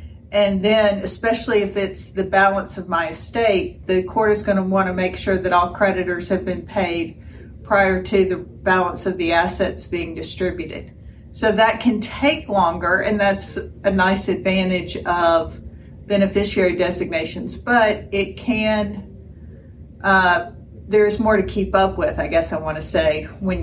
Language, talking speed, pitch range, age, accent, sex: English, 155 wpm, 185-215 Hz, 40-59, American, female